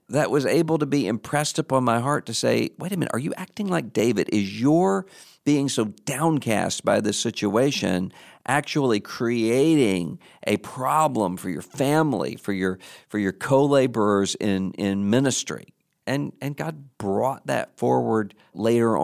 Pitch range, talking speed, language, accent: 95-115 Hz, 155 wpm, English, American